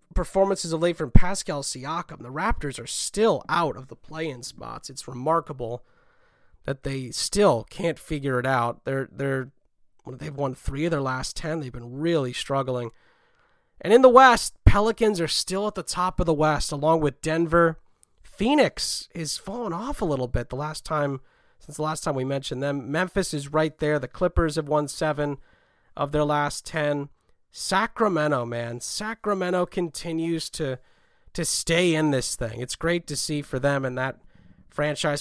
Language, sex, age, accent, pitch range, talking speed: English, male, 30-49, American, 130-170 Hz, 175 wpm